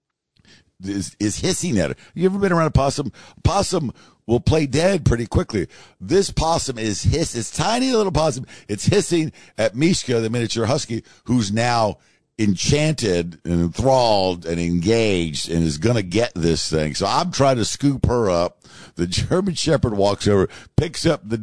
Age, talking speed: 50-69, 175 wpm